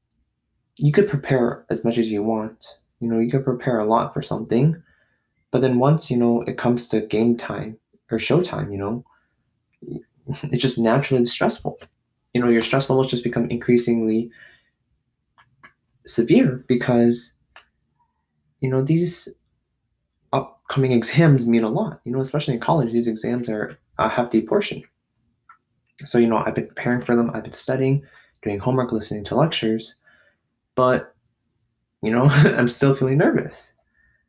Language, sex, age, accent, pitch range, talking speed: English, male, 20-39, American, 115-135 Hz, 155 wpm